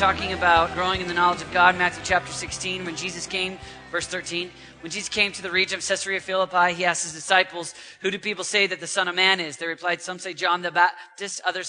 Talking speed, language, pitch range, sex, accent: 240 wpm, English, 175-205 Hz, male, American